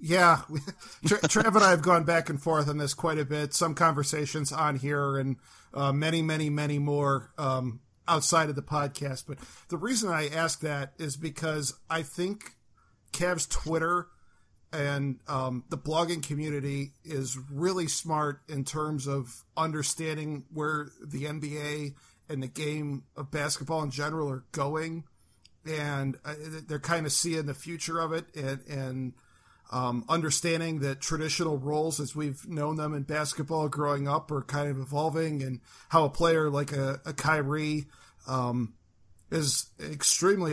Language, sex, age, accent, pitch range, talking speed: English, male, 50-69, American, 140-160 Hz, 155 wpm